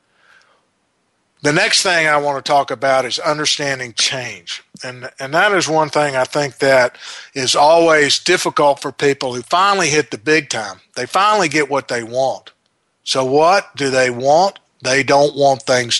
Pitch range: 130-155 Hz